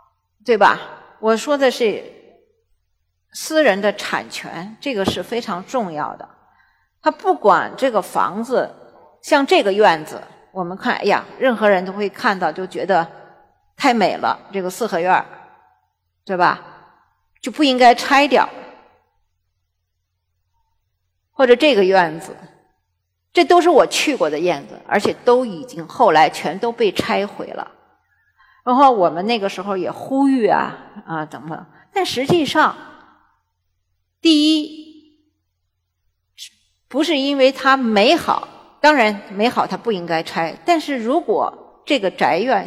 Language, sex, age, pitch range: Chinese, female, 50-69, 165-275 Hz